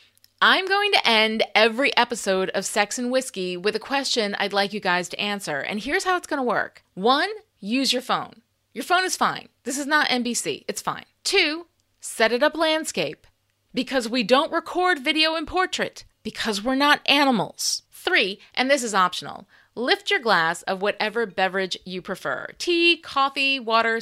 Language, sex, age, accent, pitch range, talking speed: English, female, 30-49, American, 190-280 Hz, 175 wpm